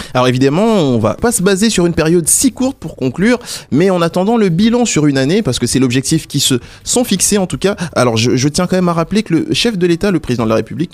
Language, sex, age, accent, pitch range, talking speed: French, male, 20-39, French, 125-185 Hz, 280 wpm